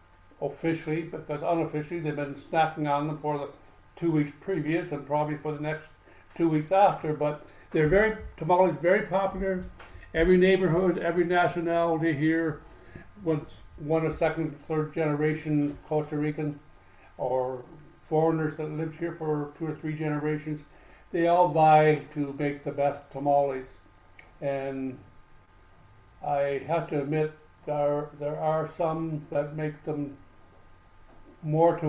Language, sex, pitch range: English, male, 140-155 Hz